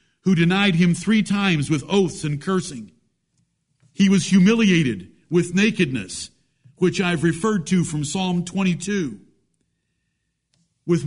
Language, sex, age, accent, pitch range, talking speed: English, male, 60-79, American, 165-220 Hz, 120 wpm